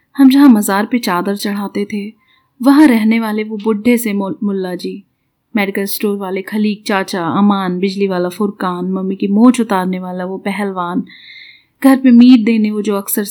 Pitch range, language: 195-225 Hz, Hindi